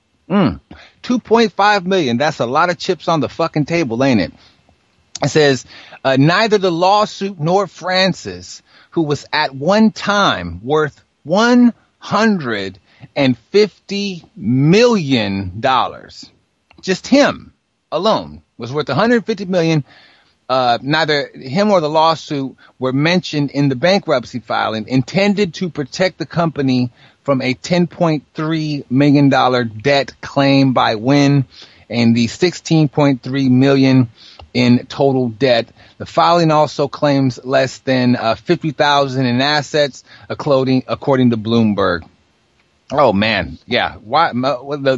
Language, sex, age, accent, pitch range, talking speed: English, male, 30-49, American, 125-170 Hz, 125 wpm